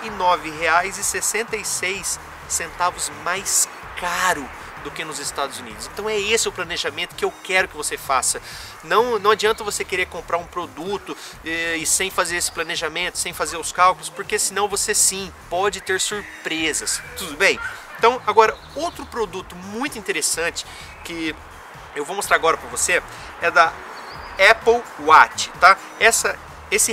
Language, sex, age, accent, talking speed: Portuguese, male, 30-49, Brazilian, 150 wpm